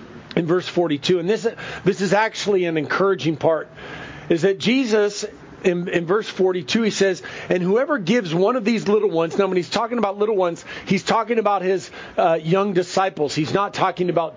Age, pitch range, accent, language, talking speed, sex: 40-59, 175-220 Hz, American, English, 190 wpm, male